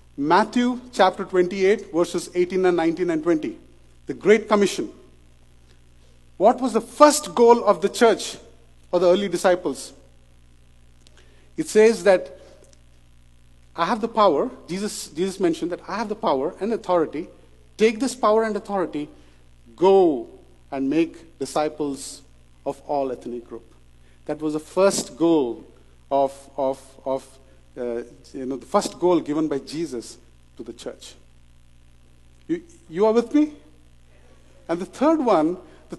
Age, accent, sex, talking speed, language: 50-69, Indian, male, 140 wpm, English